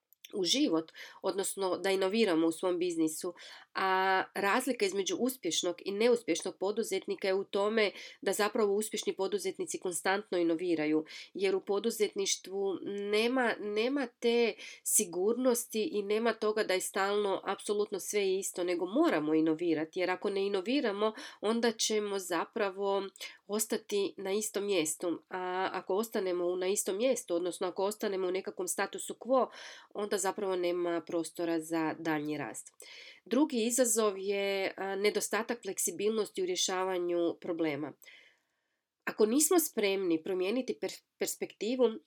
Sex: female